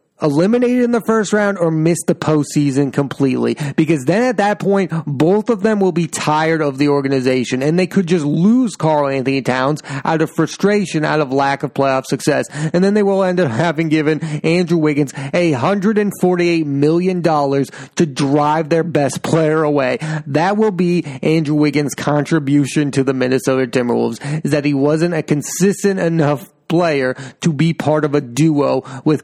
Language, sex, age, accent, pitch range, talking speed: English, male, 30-49, American, 135-170 Hz, 185 wpm